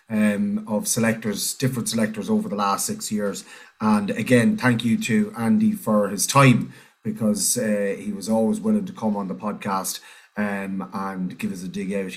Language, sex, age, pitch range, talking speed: English, male, 30-49, 110-145 Hz, 180 wpm